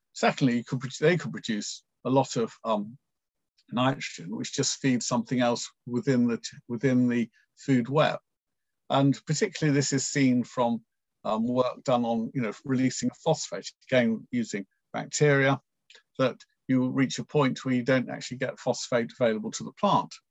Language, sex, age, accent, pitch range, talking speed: English, male, 50-69, British, 125-150 Hz, 145 wpm